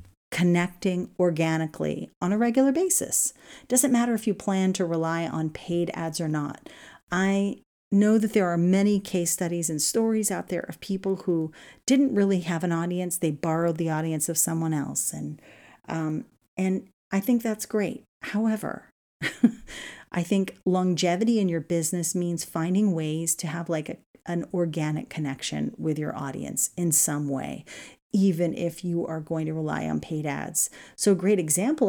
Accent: American